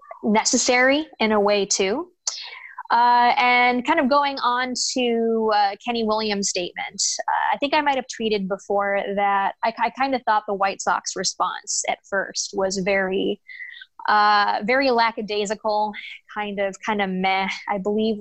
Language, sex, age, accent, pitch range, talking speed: English, female, 20-39, American, 200-250 Hz, 160 wpm